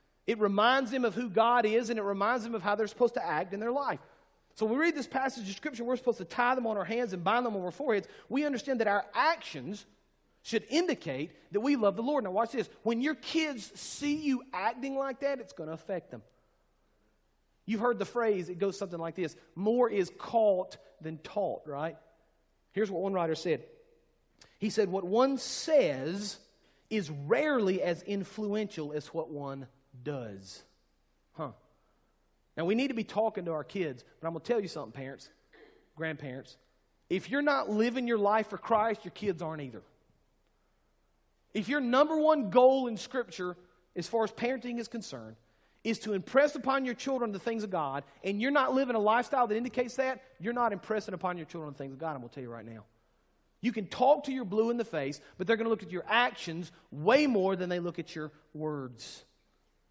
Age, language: 40-59, English